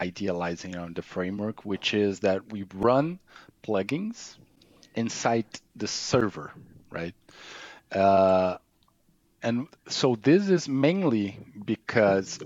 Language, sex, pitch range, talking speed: English, male, 95-115 Hz, 100 wpm